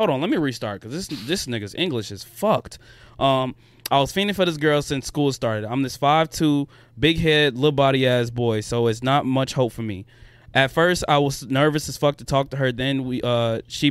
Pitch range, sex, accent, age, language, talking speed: 120-145 Hz, male, American, 20-39, English, 235 wpm